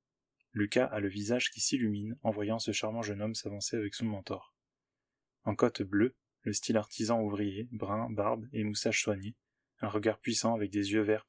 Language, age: French, 20-39